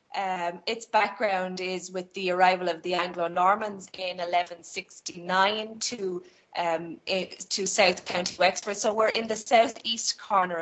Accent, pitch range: Irish, 185-225 Hz